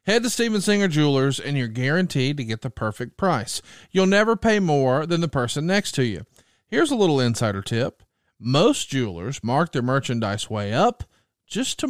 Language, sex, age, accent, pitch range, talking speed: English, male, 40-59, American, 125-195 Hz, 185 wpm